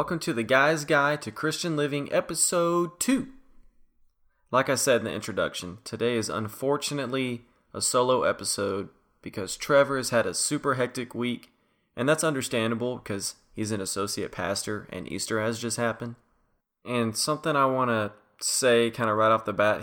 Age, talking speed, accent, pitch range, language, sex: 20-39, 165 wpm, American, 105-130 Hz, English, male